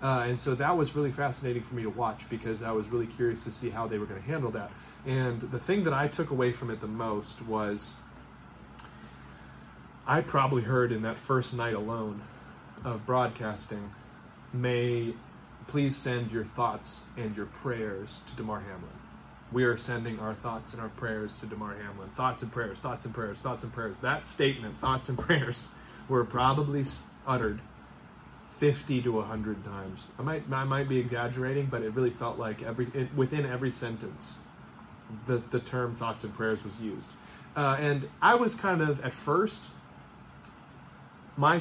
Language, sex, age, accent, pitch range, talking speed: English, male, 30-49, American, 110-135 Hz, 180 wpm